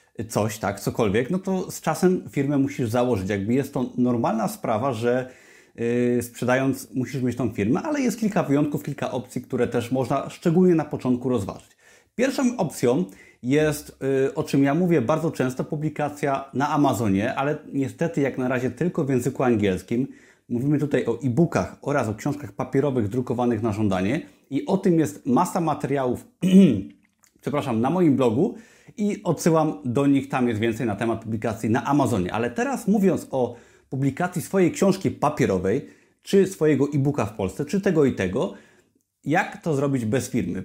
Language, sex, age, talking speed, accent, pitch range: Polish, male, 30-49, 165 wpm, native, 120-155 Hz